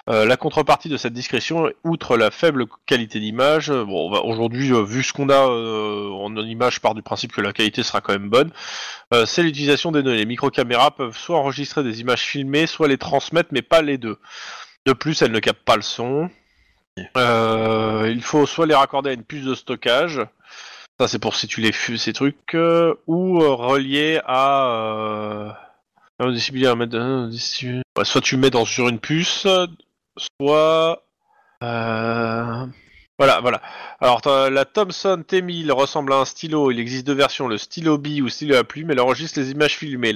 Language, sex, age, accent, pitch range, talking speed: French, male, 20-39, French, 120-155 Hz, 190 wpm